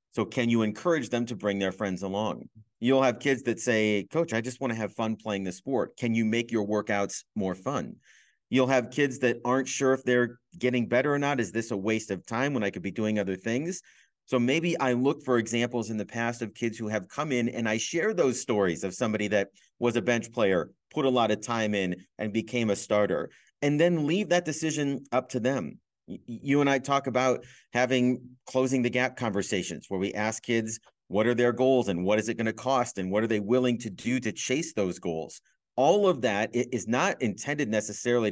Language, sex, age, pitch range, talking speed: English, male, 40-59, 105-125 Hz, 225 wpm